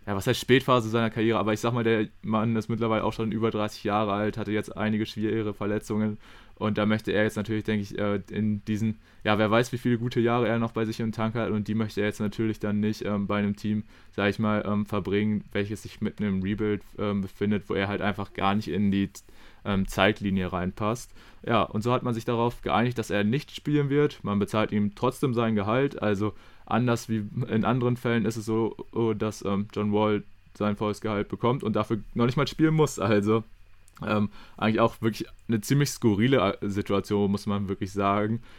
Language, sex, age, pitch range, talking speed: German, male, 20-39, 100-115 Hz, 210 wpm